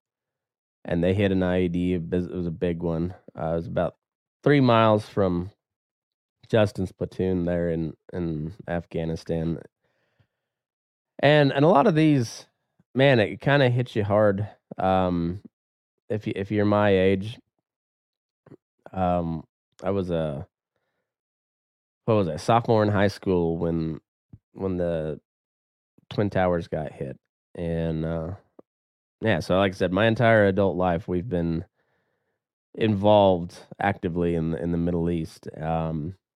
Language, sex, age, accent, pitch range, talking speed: English, male, 20-39, American, 85-100 Hz, 135 wpm